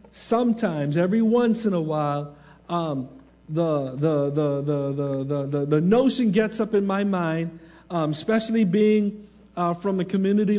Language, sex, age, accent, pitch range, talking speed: English, male, 50-69, American, 140-215 Hz, 155 wpm